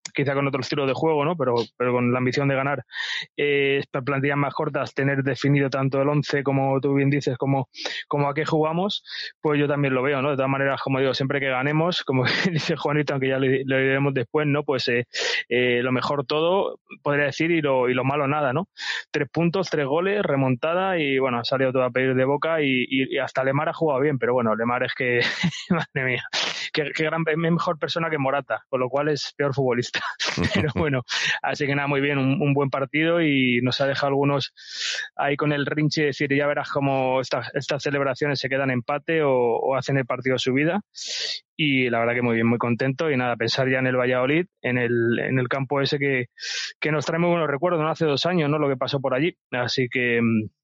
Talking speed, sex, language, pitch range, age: 225 wpm, male, Spanish, 130-150 Hz, 20-39